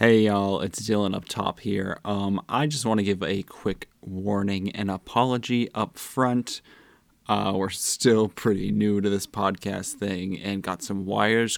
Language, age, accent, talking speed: English, 20-39, American, 170 wpm